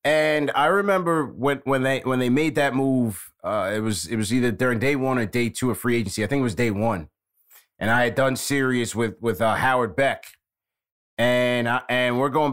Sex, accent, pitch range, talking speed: male, American, 115-150 Hz, 225 wpm